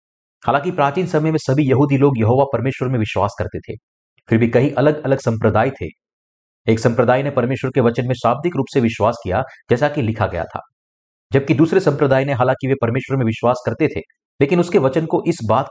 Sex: male